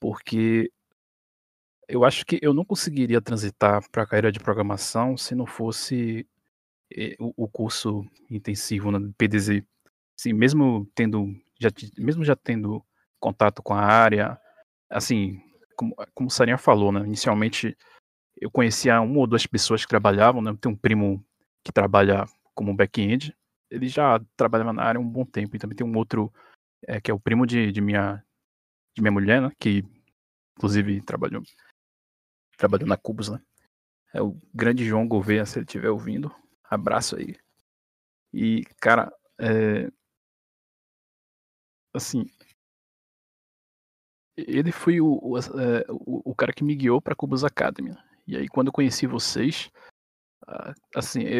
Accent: Brazilian